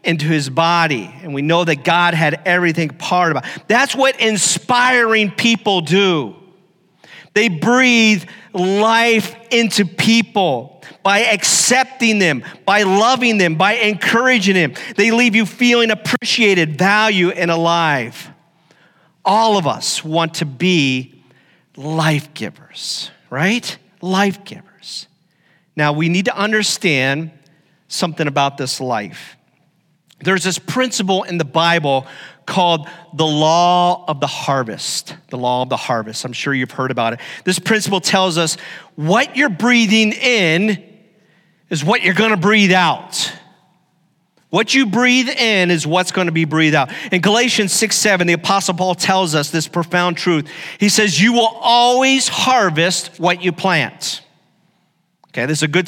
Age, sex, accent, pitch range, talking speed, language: 40-59, male, American, 165-210 Hz, 145 wpm, English